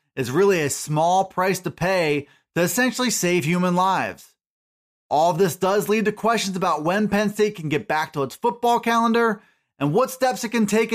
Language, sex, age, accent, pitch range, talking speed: English, male, 30-49, American, 175-215 Hz, 195 wpm